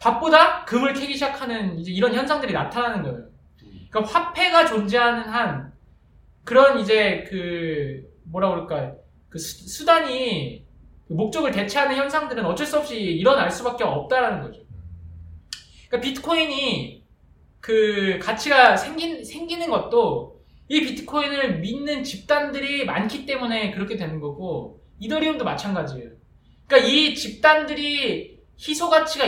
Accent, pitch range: Korean, 190-295 Hz